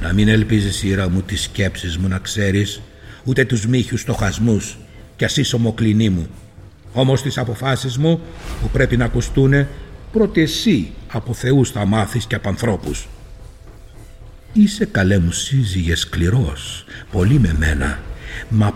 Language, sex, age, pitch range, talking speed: Greek, male, 60-79, 95-125 Hz, 140 wpm